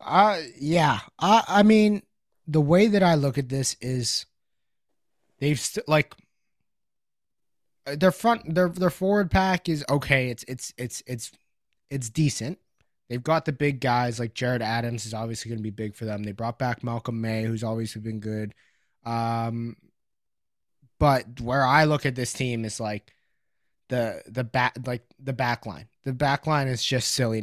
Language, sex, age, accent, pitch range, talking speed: English, male, 20-39, American, 115-140 Hz, 170 wpm